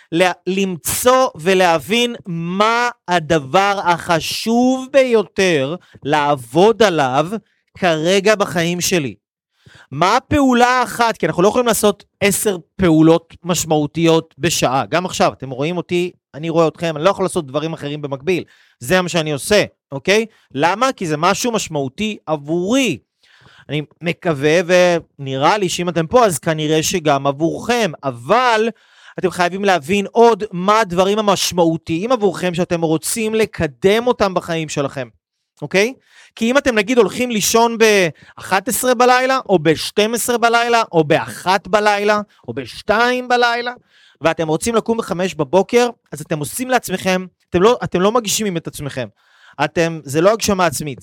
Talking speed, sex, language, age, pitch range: 135 wpm, male, Hebrew, 30-49, 160-215 Hz